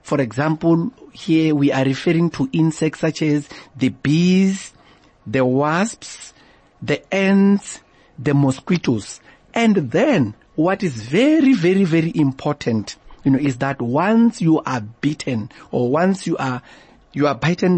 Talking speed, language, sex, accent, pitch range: 140 wpm, English, male, South African, 135-190 Hz